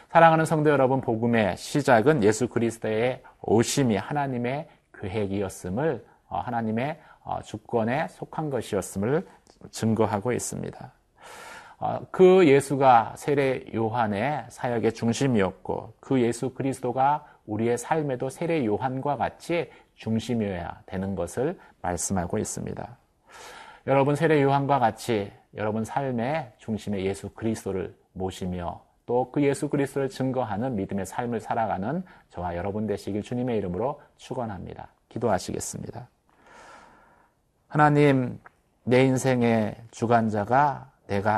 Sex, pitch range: male, 105-140 Hz